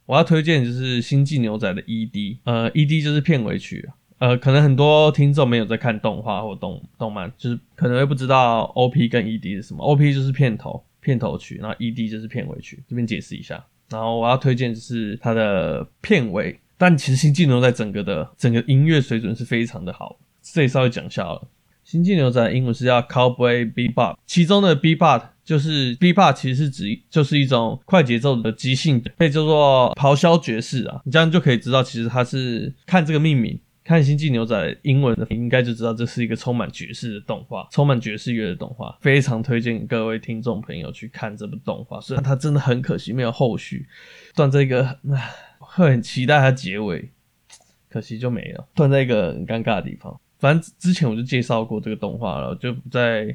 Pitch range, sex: 115-150 Hz, male